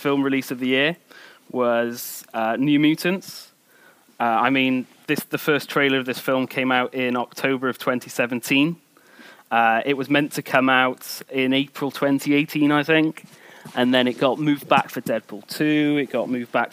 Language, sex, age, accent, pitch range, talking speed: English, male, 30-49, British, 130-150 Hz, 175 wpm